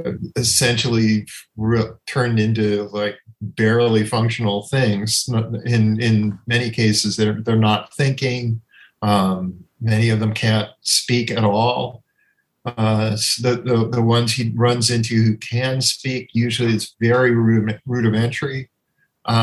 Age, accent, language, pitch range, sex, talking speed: 50-69, American, English, 110-135 Hz, male, 125 wpm